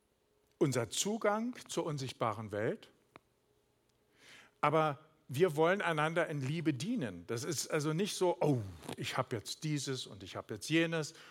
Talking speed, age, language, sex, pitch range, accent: 145 wpm, 50-69, German, male, 125-165 Hz, German